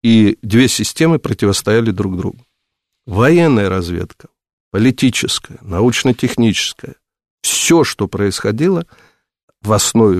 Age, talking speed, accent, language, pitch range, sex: 50-69, 90 wpm, native, Russian, 100-125 Hz, male